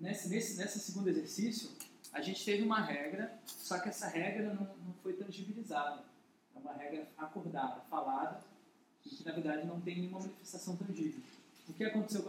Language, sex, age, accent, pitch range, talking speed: Portuguese, male, 20-39, Brazilian, 165-215 Hz, 175 wpm